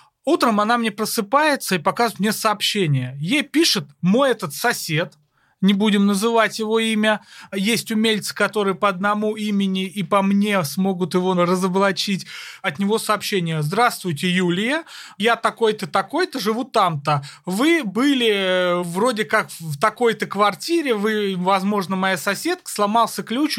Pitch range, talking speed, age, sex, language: 190-240 Hz, 135 wpm, 30-49, male, Russian